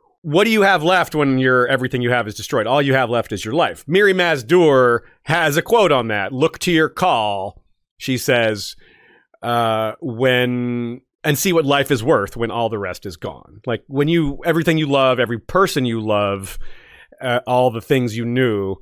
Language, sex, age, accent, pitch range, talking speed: English, male, 30-49, American, 115-165 Hz, 200 wpm